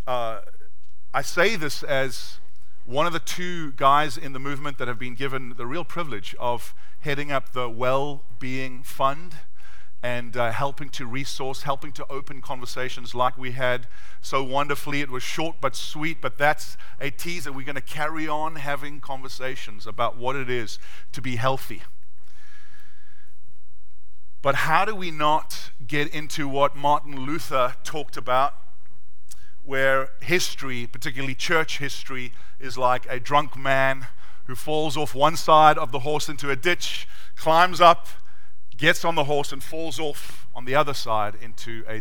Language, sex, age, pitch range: English, male, 40-59, 110-145 Hz